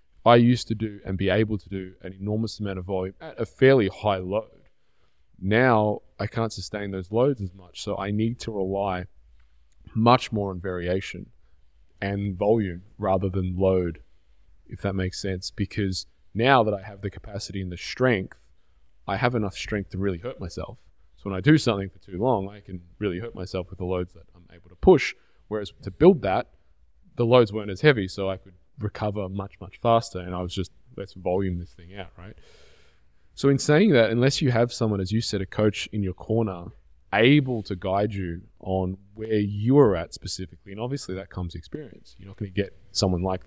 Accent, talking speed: Australian, 205 wpm